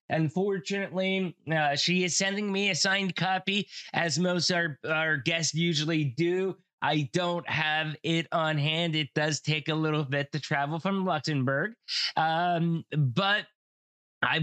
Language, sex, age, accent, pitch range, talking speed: English, male, 20-39, American, 140-170 Hz, 145 wpm